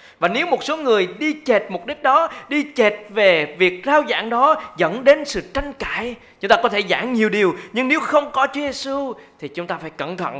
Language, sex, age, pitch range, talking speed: Vietnamese, male, 20-39, 190-285 Hz, 235 wpm